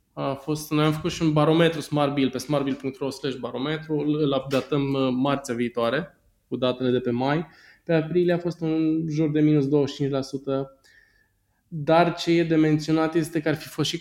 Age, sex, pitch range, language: 20-39, male, 120-150 Hz, Romanian